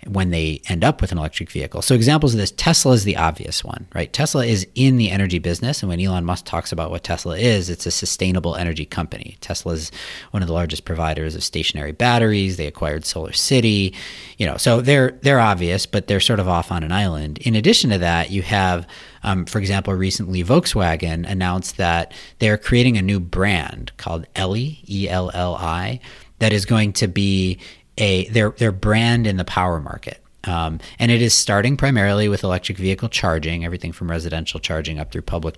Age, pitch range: 40-59, 85-110 Hz